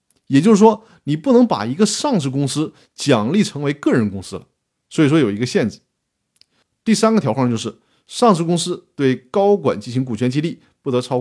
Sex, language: male, Chinese